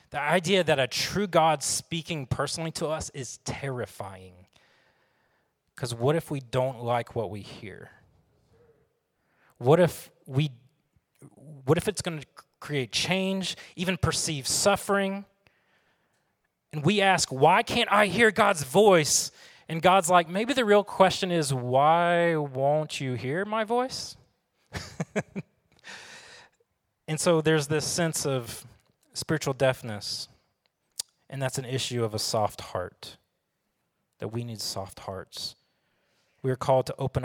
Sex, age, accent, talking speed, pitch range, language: male, 30-49, American, 135 wpm, 130-180 Hz, English